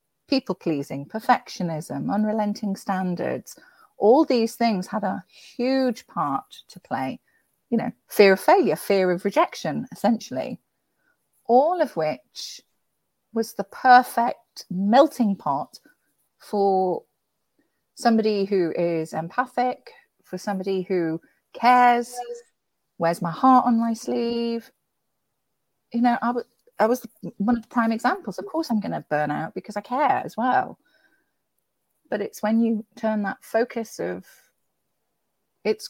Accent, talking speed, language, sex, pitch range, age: British, 130 wpm, English, female, 185-240 Hz, 40-59